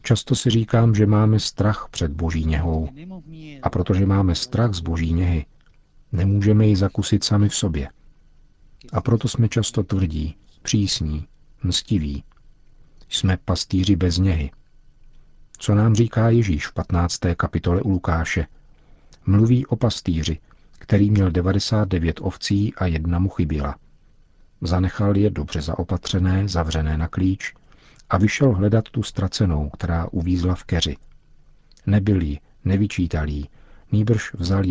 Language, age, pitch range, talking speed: Czech, 50-69, 85-105 Hz, 130 wpm